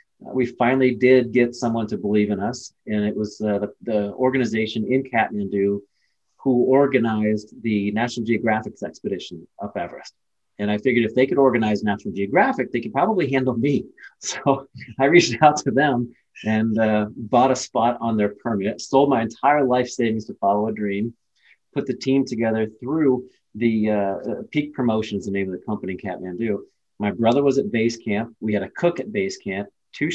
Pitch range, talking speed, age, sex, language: 105-130 Hz, 185 wpm, 30-49, male, English